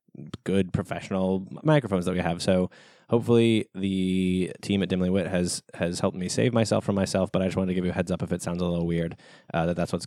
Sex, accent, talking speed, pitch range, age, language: male, American, 245 wpm, 90-100 Hz, 20-39, English